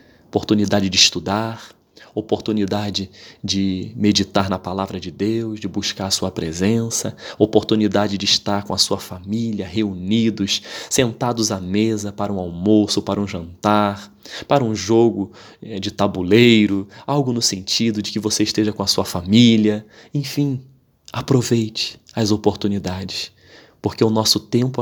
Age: 20-39